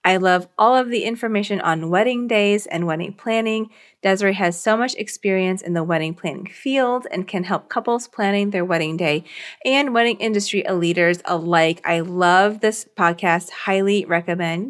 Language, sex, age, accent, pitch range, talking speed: English, female, 30-49, American, 175-220 Hz, 165 wpm